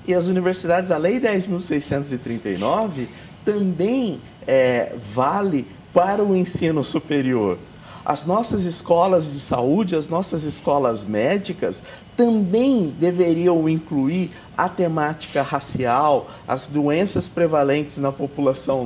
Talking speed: 100 wpm